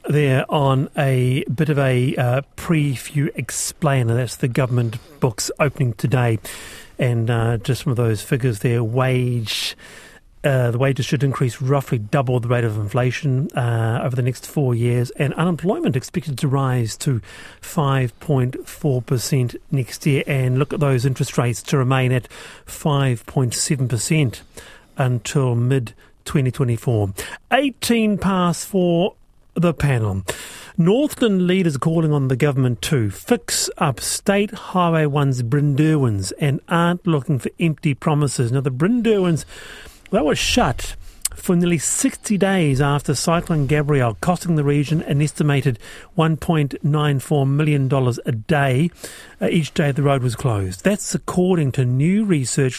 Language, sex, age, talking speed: English, male, 40-59, 140 wpm